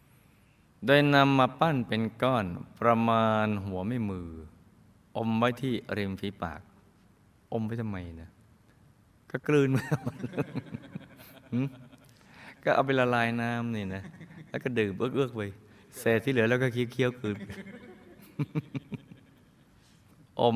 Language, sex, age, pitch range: Thai, male, 20-39, 105-135 Hz